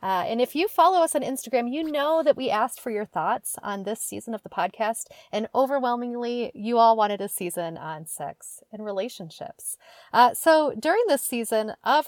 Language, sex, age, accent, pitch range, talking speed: English, female, 30-49, American, 210-280 Hz, 195 wpm